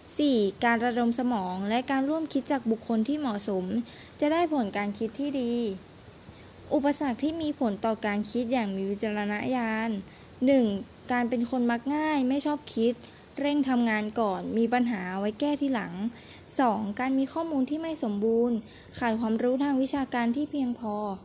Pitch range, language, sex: 215-265 Hz, Thai, female